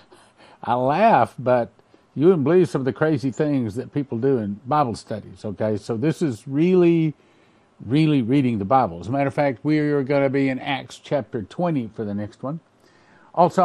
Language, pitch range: English, 115-145 Hz